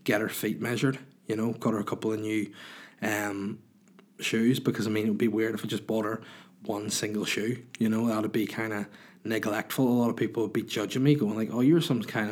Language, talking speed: English, 250 wpm